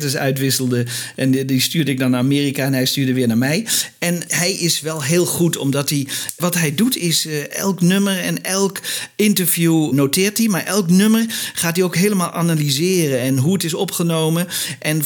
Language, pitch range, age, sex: Dutch, 135-190 Hz, 50-69, male